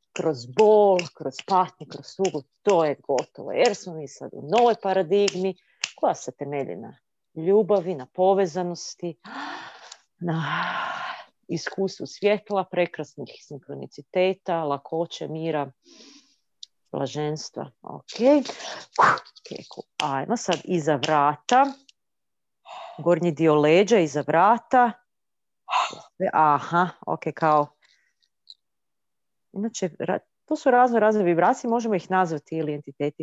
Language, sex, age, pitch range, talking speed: Croatian, female, 40-59, 155-215 Hz, 100 wpm